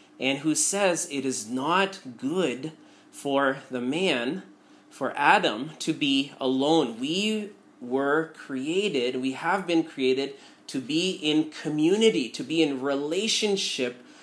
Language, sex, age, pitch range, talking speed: English, male, 30-49, 135-210 Hz, 125 wpm